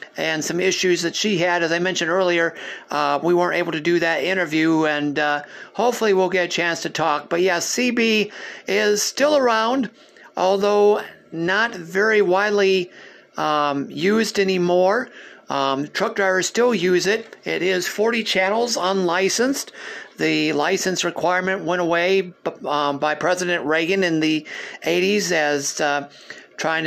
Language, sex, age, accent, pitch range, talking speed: English, male, 50-69, American, 155-190 Hz, 150 wpm